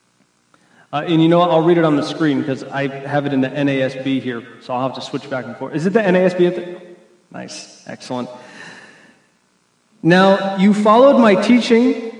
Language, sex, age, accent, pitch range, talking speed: English, male, 40-59, American, 155-210 Hz, 185 wpm